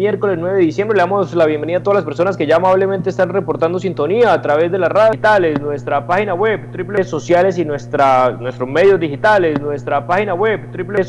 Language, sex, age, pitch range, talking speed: Spanish, male, 30-49, 145-195 Hz, 205 wpm